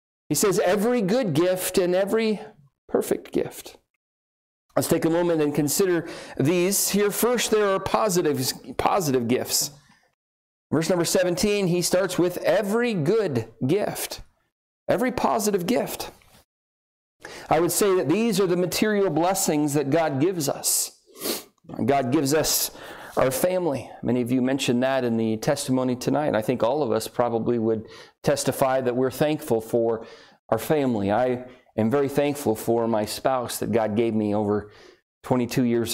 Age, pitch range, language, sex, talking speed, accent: 40-59, 110-175 Hz, English, male, 150 wpm, American